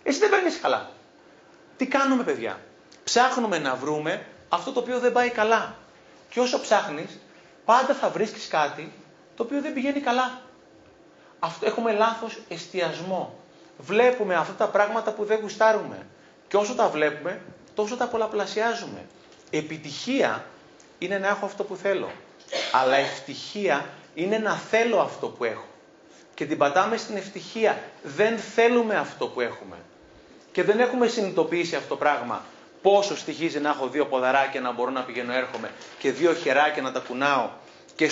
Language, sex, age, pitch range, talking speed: Greek, male, 30-49, 145-220 Hz, 150 wpm